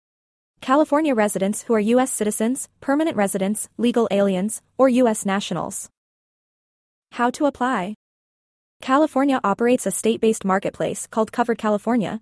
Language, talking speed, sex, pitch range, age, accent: English, 120 wpm, female, 200-245 Hz, 20-39, American